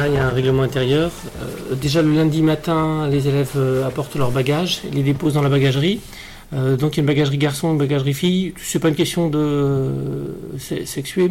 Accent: French